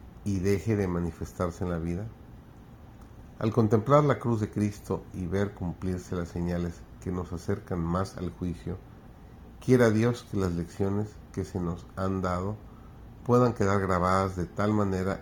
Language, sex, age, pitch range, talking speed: Spanish, male, 50-69, 85-110 Hz, 160 wpm